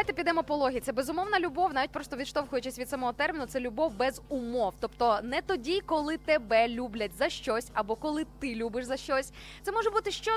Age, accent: 20-39, native